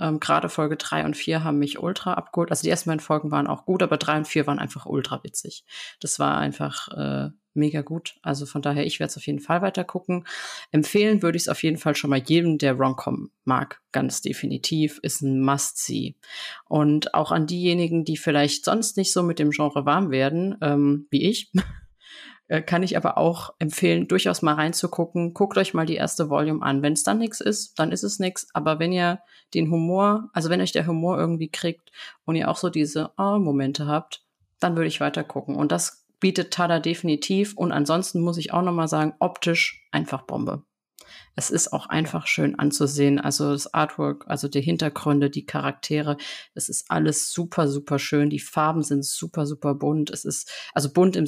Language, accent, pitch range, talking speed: German, German, 145-170 Hz, 200 wpm